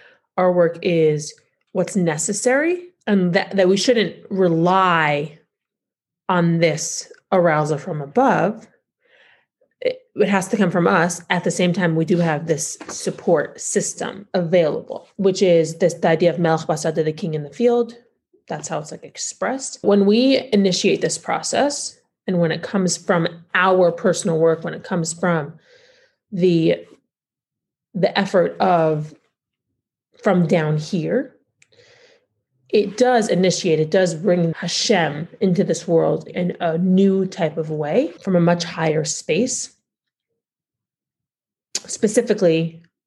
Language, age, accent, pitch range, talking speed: English, 30-49, American, 165-210 Hz, 135 wpm